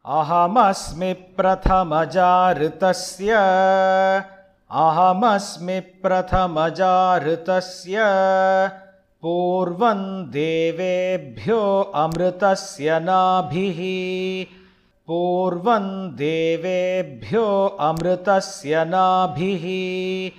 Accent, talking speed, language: native, 30 wpm, Hindi